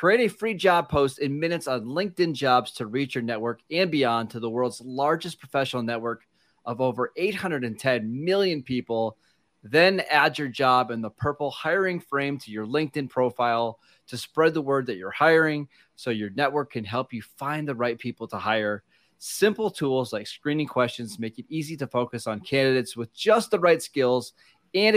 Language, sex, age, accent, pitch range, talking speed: English, male, 30-49, American, 115-150 Hz, 185 wpm